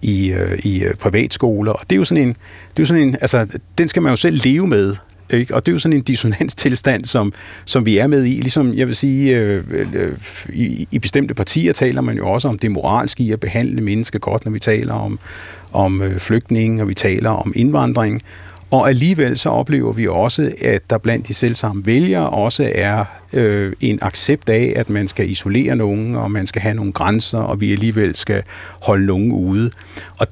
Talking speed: 210 wpm